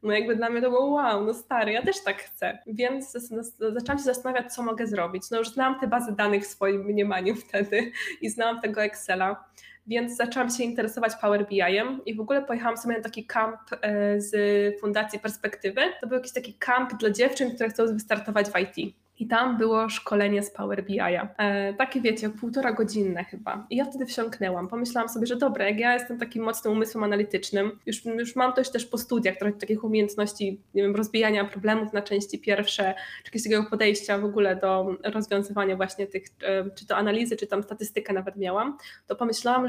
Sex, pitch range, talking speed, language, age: female, 205-240 Hz, 195 wpm, Polish, 20-39